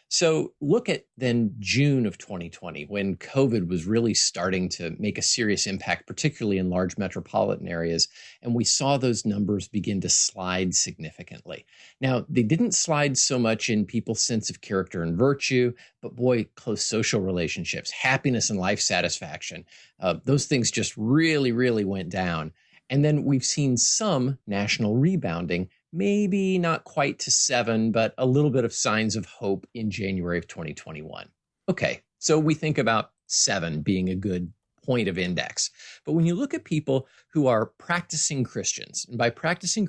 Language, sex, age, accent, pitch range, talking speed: English, male, 50-69, American, 95-140 Hz, 165 wpm